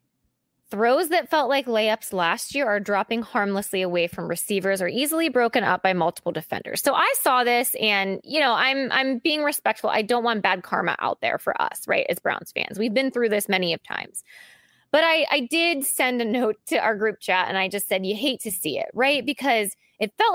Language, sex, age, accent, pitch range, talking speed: English, female, 20-39, American, 210-310 Hz, 220 wpm